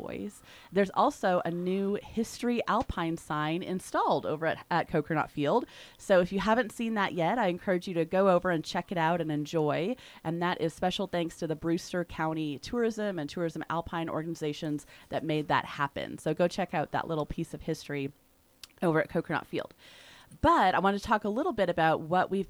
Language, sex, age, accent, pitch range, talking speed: English, female, 30-49, American, 160-195 Hz, 195 wpm